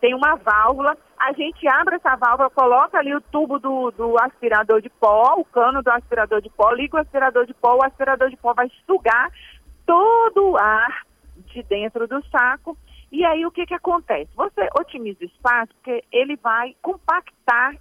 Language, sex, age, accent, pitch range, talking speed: Portuguese, female, 40-59, Brazilian, 210-275 Hz, 185 wpm